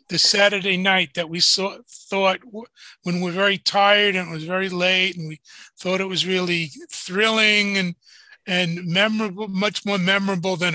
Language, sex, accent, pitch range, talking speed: English, male, American, 175-220 Hz, 160 wpm